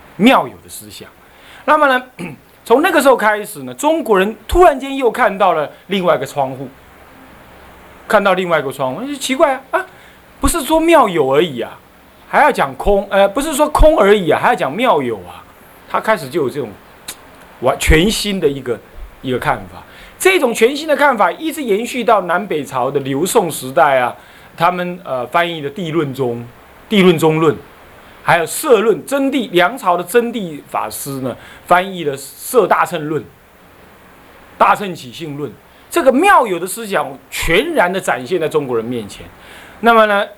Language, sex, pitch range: Chinese, male, 135-230 Hz